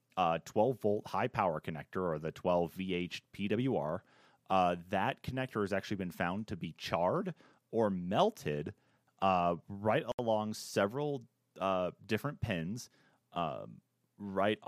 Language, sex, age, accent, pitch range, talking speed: English, male, 30-49, American, 85-105 Hz, 130 wpm